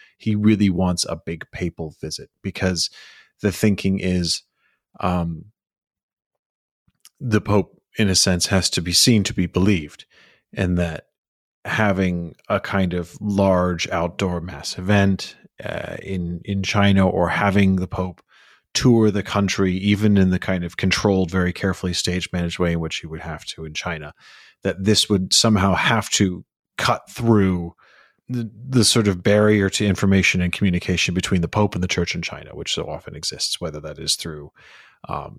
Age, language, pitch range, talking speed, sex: 30-49, English, 85-105 Hz, 165 wpm, male